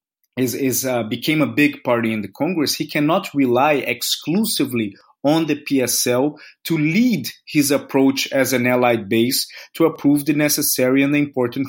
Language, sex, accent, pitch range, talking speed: English, male, Brazilian, 125-165 Hz, 165 wpm